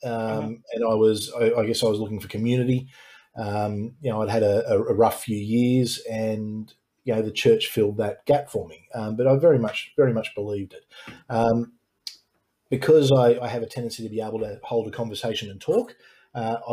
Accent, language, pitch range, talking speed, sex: Australian, English, 110-130 Hz, 205 wpm, male